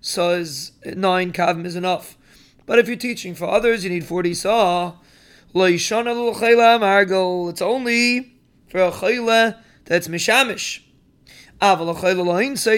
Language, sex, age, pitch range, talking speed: English, male, 20-39, 180-210 Hz, 110 wpm